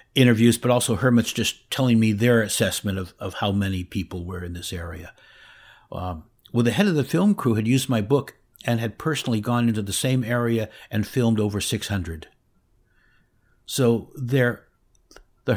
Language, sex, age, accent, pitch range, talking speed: English, male, 60-79, American, 100-125 Hz, 170 wpm